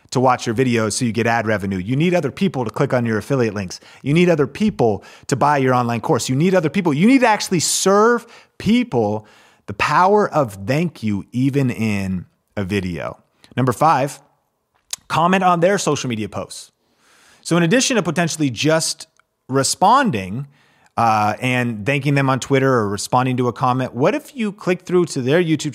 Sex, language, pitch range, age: male, English, 115-170 Hz, 30-49